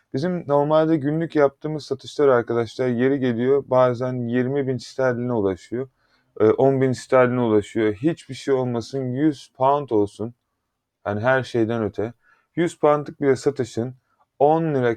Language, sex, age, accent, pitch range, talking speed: Turkish, male, 30-49, native, 125-155 Hz, 125 wpm